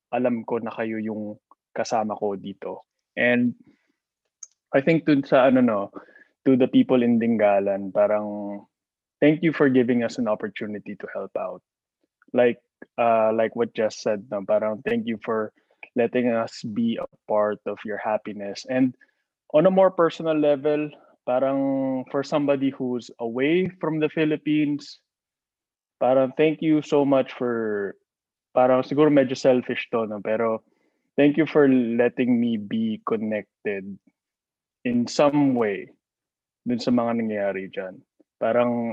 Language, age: Filipino, 20-39